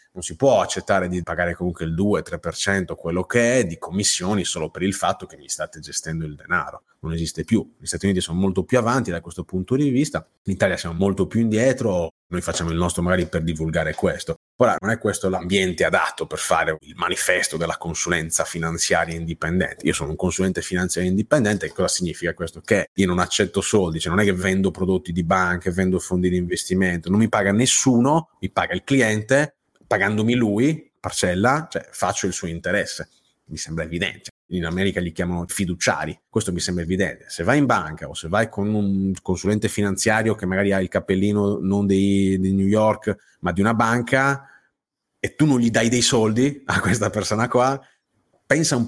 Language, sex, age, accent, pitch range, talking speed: Italian, male, 30-49, native, 90-110 Hz, 195 wpm